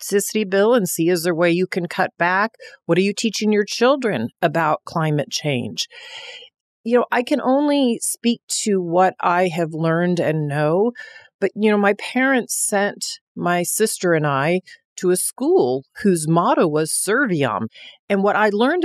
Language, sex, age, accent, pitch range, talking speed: English, female, 40-59, American, 175-235 Hz, 175 wpm